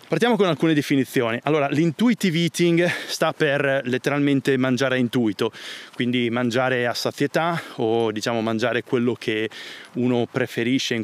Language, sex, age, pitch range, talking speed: Italian, male, 30-49, 115-135 Hz, 135 wpm